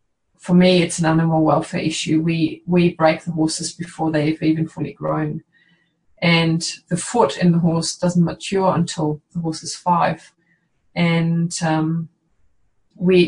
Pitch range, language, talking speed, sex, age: 165-185 Hz, English, 150 wpm, female, 20-39